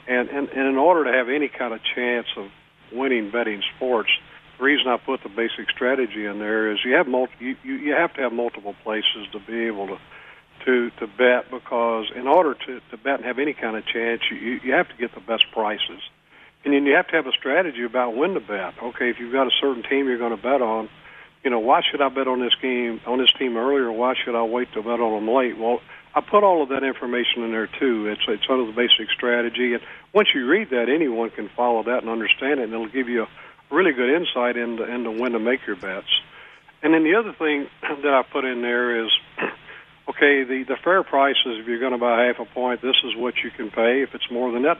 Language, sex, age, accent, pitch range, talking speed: English, male, 50-69, American, 115-135 Hz, 255 wpm